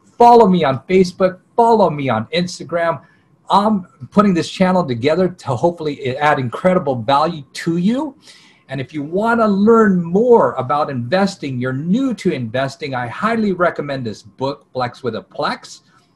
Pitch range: 130-185 Hz